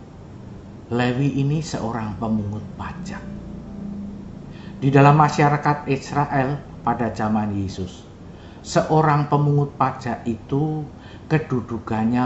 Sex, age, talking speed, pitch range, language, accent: male, 50-69, 85 wpm, 100-145 Hz, Indonesian, native